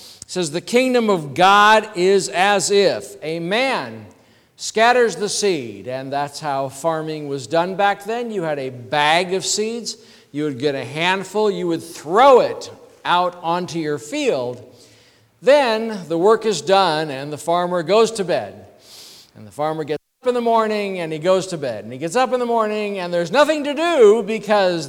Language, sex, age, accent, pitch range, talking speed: English, male, 50-69, American, 155-220 Hz, 190 wpm